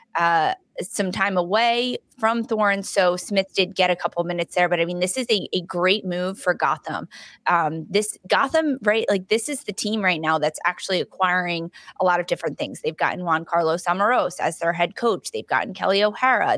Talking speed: 205 wpm